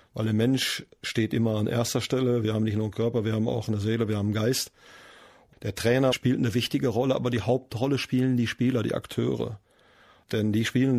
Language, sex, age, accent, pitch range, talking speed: German, male, 40-59, German, 115-130 Hz, 220 wpm